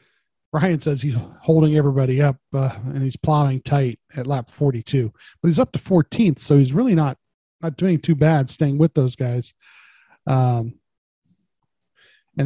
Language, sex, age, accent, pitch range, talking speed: English, male, 40-59, American, 130-155 Hz, 160 wpm